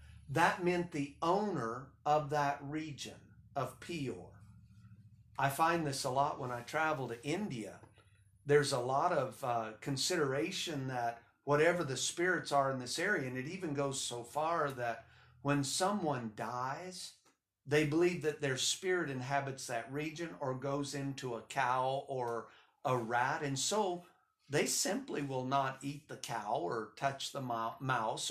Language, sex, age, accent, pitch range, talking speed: English, male, 50-69, American, 120-160 Hz, 155 wpm